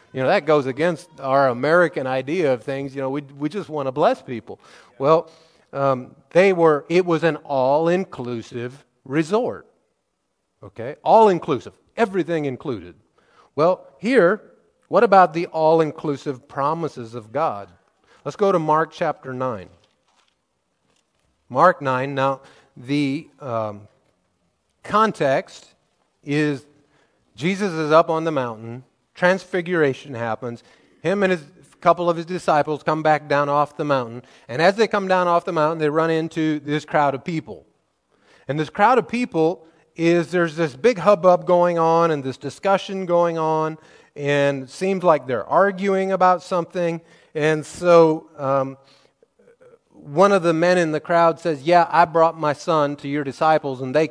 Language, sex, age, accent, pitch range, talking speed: English, male, 40-59, American, 140-175 Hz, 150 wpm